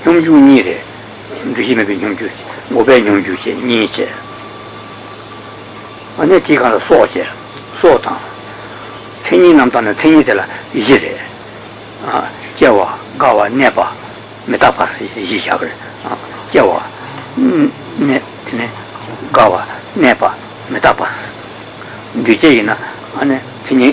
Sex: male